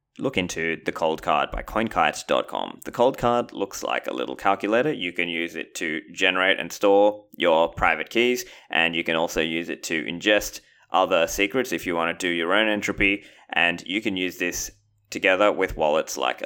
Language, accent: English, Australian